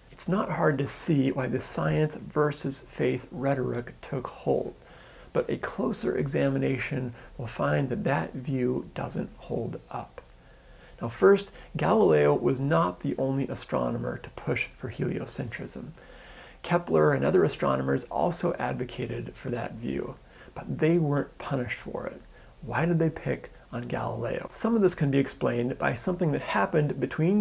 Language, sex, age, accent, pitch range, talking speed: English, male, 30-49, American, 125-155 Hz, 150 wpm